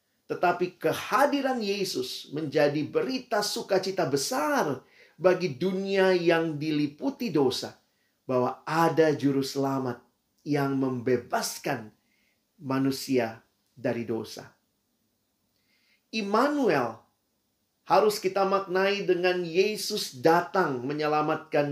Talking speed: 75 wpm